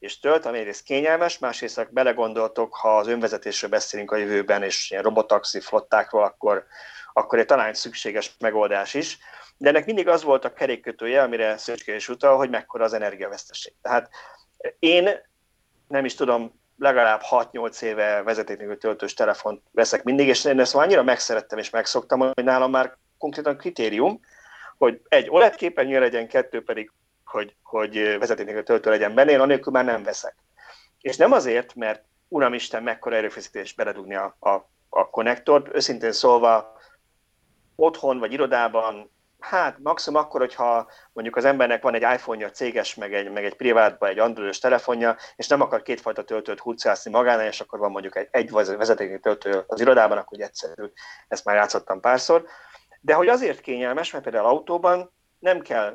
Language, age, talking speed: Hungarian, 30-49, 160 wpm